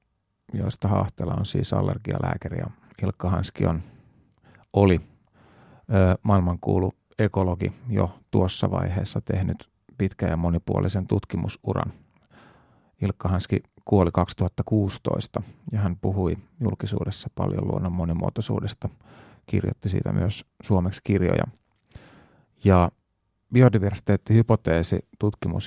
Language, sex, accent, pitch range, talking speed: Finnish, male, native, 90-110 Hz, 85 wpm